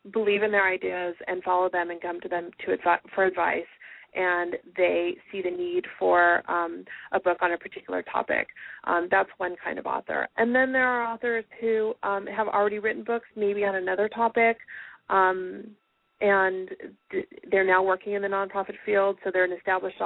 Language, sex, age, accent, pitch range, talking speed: English, female, 30-49, American, 185-225 Hz, 180 wpm